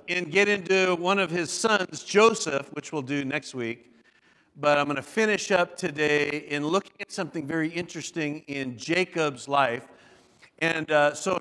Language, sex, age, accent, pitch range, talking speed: English, male, 50-69, American, 170-210 Hz, 165 wpm